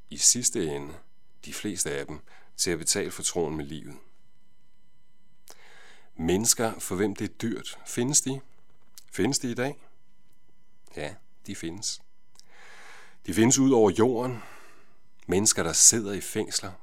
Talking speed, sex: 140 wpm, male